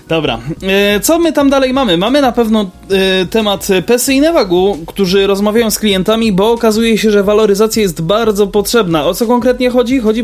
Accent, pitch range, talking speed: native, 175-230 Hz, 175 wpm